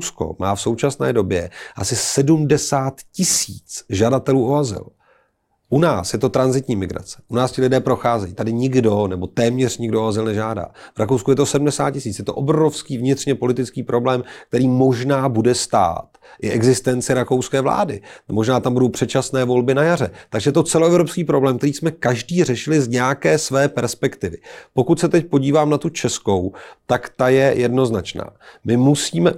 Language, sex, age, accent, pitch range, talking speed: Czech, male, 40-59, native, 110-135 Hz, 165 wpm